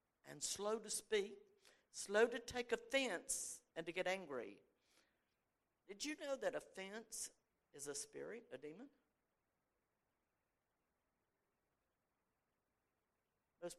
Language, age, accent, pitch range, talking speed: English, 60-79, American, 200-275 Hz, 100 wpm